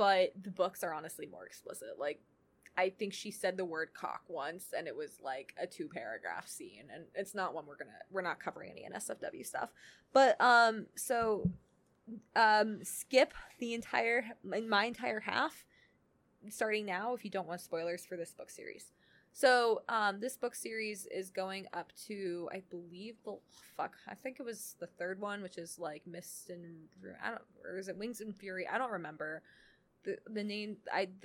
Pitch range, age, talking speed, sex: 180-220 Hz, 20-39, 190 wpm, female